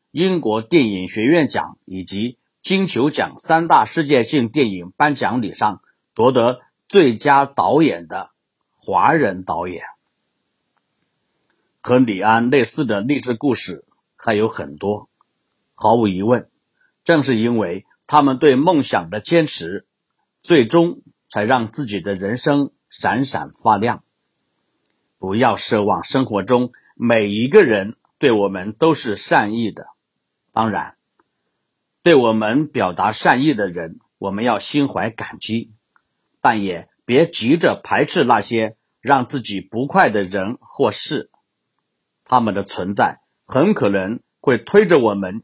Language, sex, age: Chinese, male, 50-69